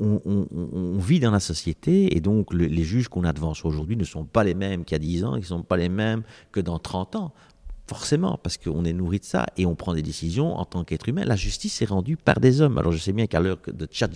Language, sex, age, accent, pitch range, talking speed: French, male, 50-69, French, 80-100 Hz, 285 wpm